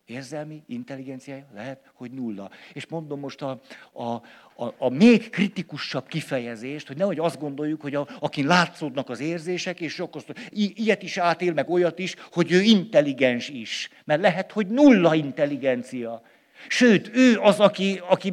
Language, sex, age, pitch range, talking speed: Hungarian, male, 60-79, 145-215 Hz, 155 wpm